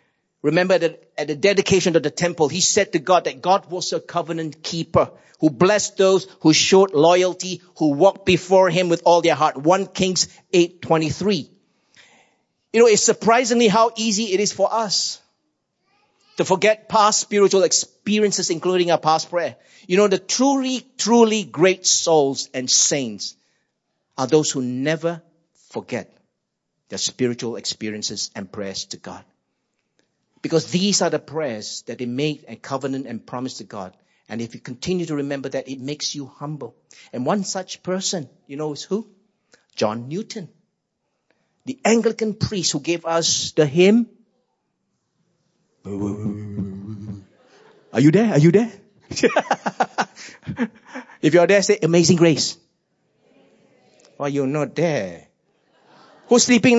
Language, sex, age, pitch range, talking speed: English, male, 50-69, 150-205 Hz, 145 wpm